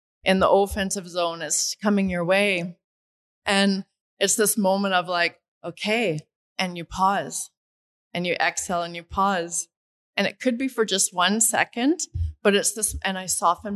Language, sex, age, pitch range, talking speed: English, female, 20-39, 170-200 Hz, 165 wpm